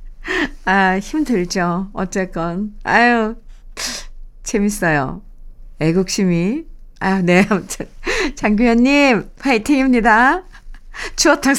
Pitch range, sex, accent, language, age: 190-260 Hz, female, native, Korean, 50-69